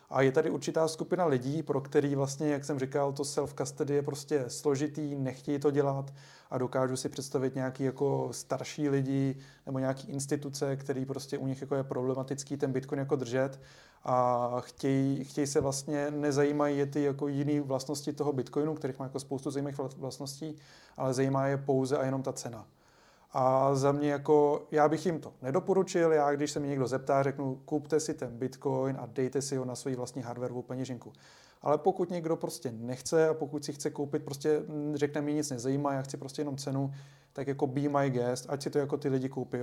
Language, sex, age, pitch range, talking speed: Czech, male, 30-49, 130-150 Hz, 200 wpm